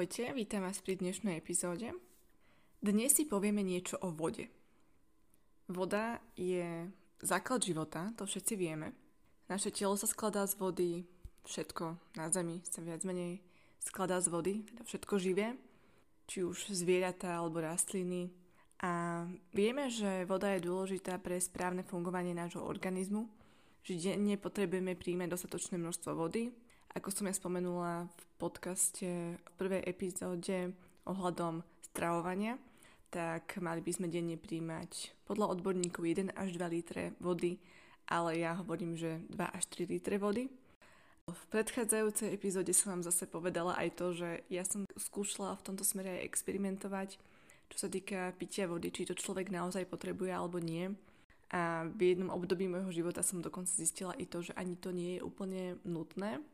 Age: 20-39